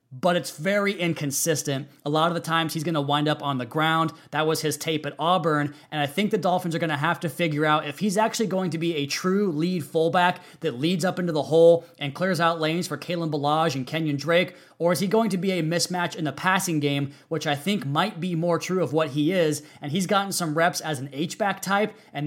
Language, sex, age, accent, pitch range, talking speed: English, male, 20-39, American, 150-175 Hz, 255 wpm